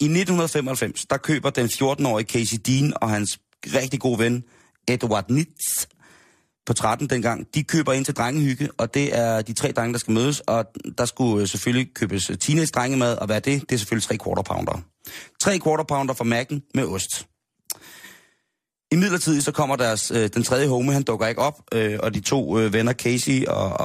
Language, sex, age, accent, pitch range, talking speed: Danish, male, 30-49, native, 100-135 Hz, 185 wpm